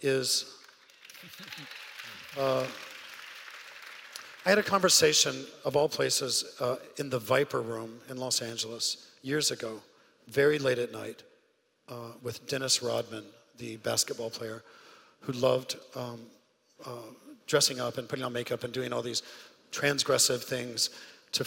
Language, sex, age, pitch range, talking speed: English, male, 40-59, 120-145 Hz, 130 wpm